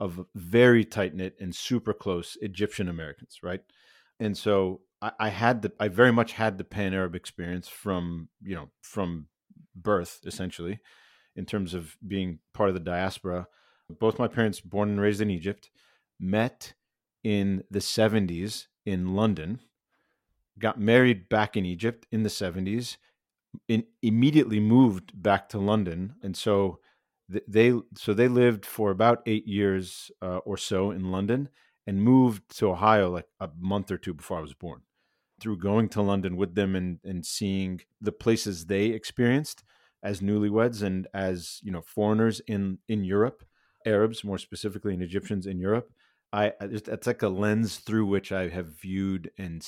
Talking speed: 165 wpm